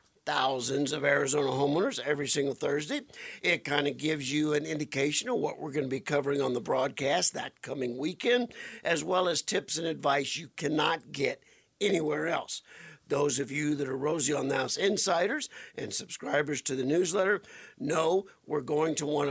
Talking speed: 180 wpm